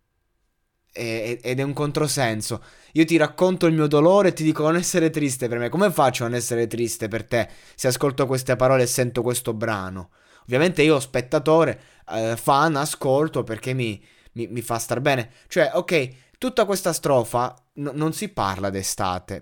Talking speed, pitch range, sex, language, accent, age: 170 wpm, 115-155 Hz, male, Italian, native, 20-39